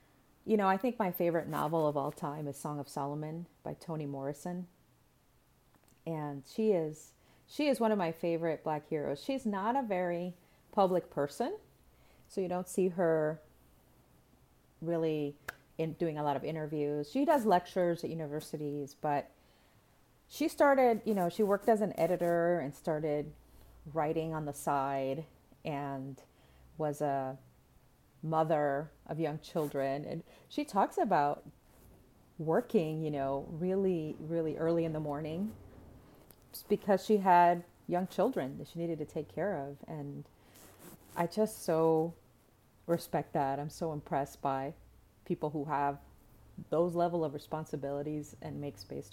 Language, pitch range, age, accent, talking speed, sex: English, 140-180 Hz, 30-49, American, 145 wpm, female